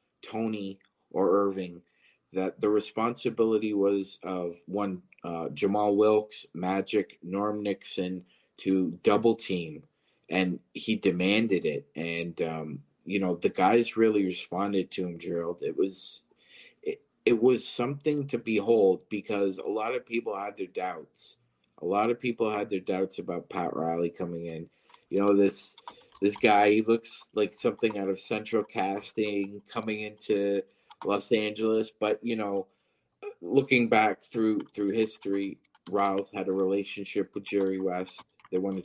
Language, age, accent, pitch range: English, 30-49, American, 95-110 Hz